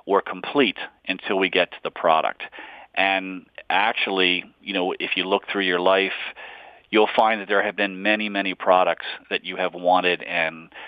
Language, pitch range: English, 95-115 Hz